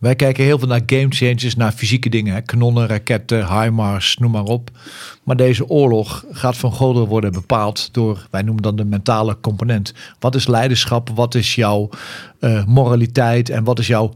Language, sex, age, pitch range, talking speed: Dutch, male, 40-59, 115-135 Hz, 180 wpm